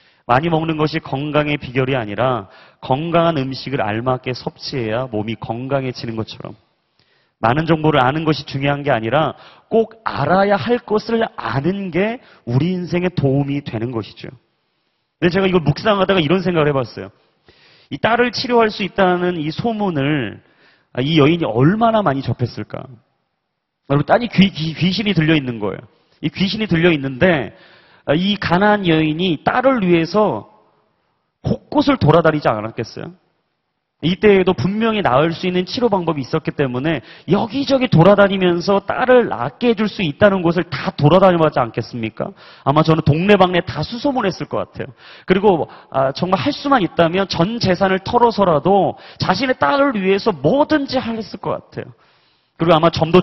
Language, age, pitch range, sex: Korean, 30-49, 140-195 Hz, male